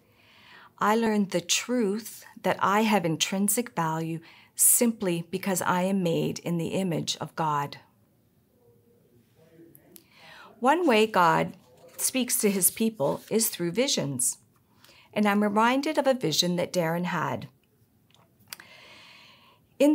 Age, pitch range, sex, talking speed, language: 50-69, 170-230 Hz, female, 115 wpm, English